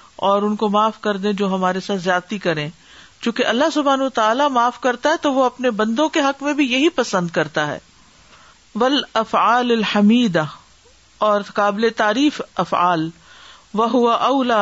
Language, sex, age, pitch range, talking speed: Urdu, female, 50-69, 195-260 Hz, 160 wpm